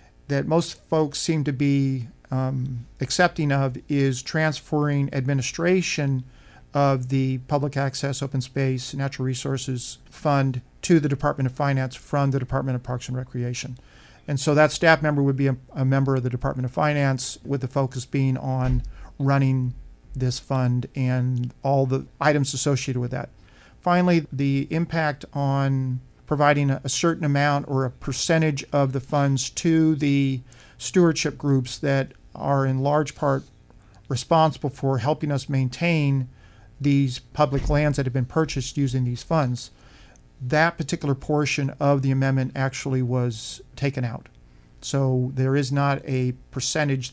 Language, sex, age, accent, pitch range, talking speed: English, male, 40-59, American, 130-145 Hz, 150 wpm